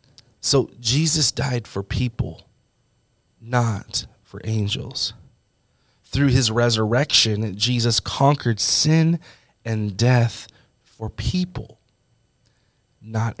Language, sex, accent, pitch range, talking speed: English, male, American, 110-130 Hz, 85 wpm